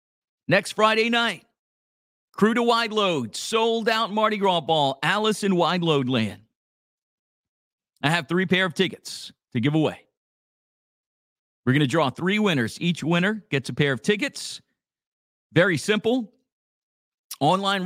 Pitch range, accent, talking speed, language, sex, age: 175-230 Hz, American, 140 wpm, English, male, 50-69